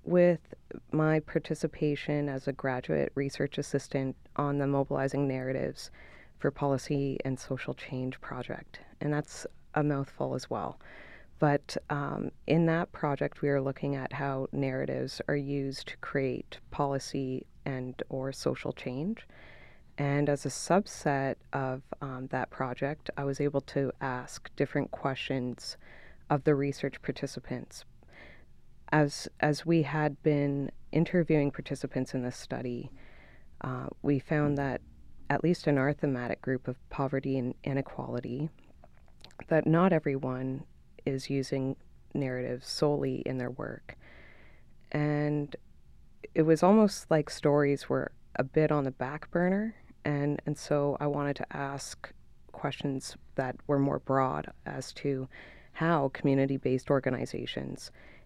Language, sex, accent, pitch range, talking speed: English, female, American, 130-150 Hz, 130 wpm